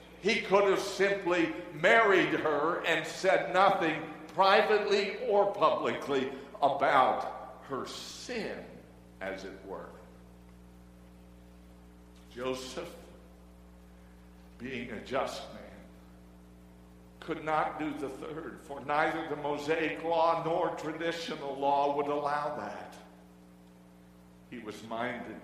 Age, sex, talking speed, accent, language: 60-79, male, 100 wpm, American, English